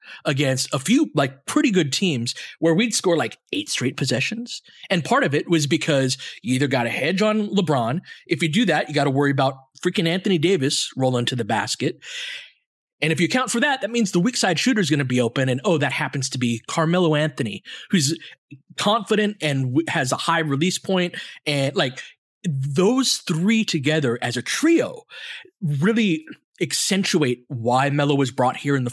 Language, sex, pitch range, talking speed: English, male, 130-180 Hz, 195 wpm